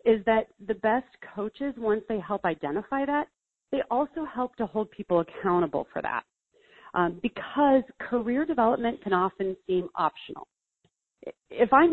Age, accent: 30-49, American